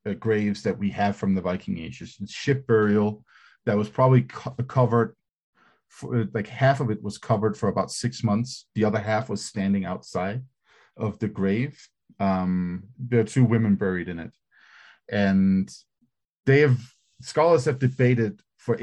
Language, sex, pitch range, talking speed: English, male, 105-125 Hz, 165 wpm